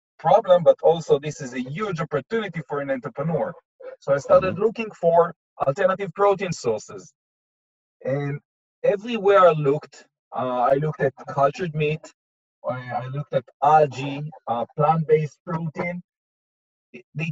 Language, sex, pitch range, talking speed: English, male, 140-195 Hz, 130 wpm